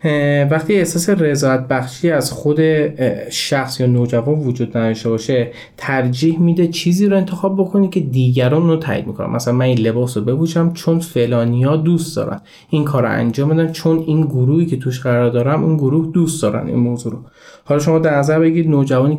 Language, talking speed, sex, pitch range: Persian, 180 wpm, male, 125-160 Hz